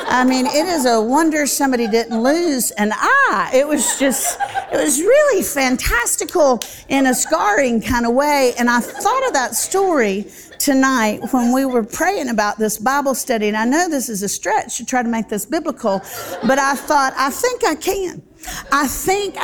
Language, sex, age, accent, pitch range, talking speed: English, female, 50-69, American, 195-280 Hz, 190 wpm